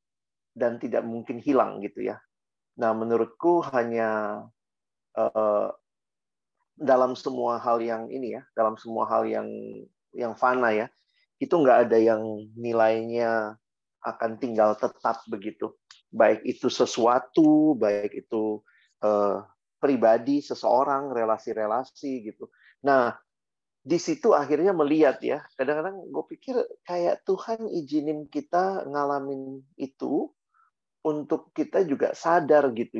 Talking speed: 115 wpm